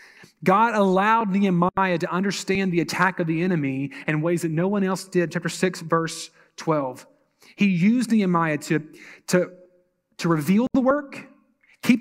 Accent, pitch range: American, 155-195 Hz